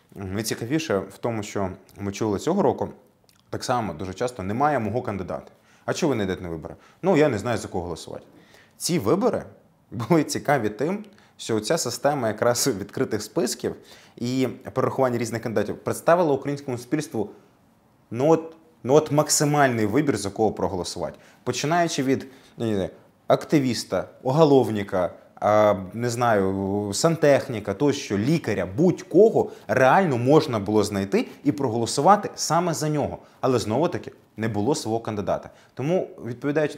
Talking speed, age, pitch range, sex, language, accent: 130 wpm, 20-39, 105-145 Hz, male, Ukrainian, native